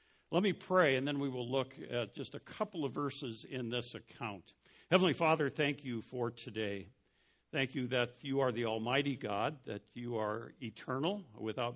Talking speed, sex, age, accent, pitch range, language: 185 wpm, male, 60-79, American, 110-140 Hz, English